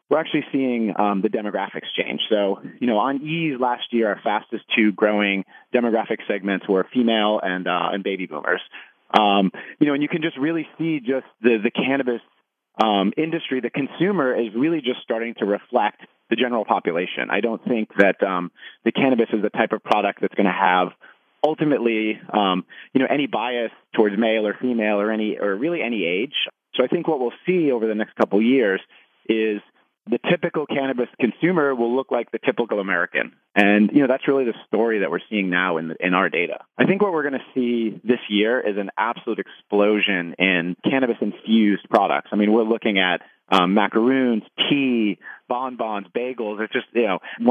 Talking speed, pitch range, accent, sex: 195 wpm, 100-125 Hz, American, male